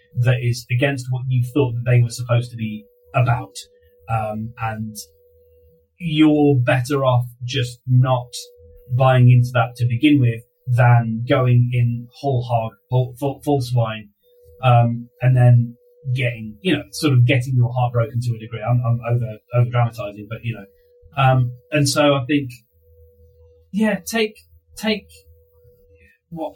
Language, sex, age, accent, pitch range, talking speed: English, male, 30-49, British, 110-135 Hz, 140 wpm